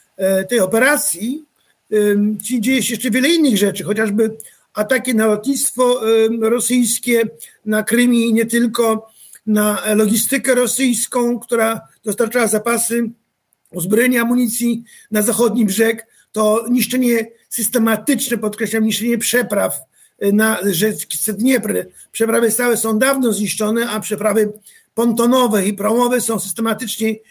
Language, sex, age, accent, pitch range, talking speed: Polish, male, 50-69, native, 210-240 Hz, 110 wpm